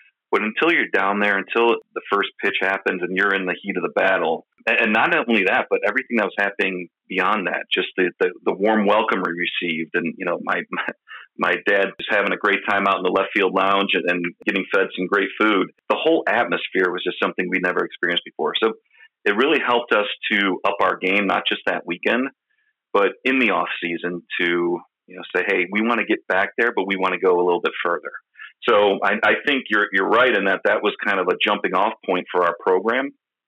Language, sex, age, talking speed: English, male, 40-59, 230 wpm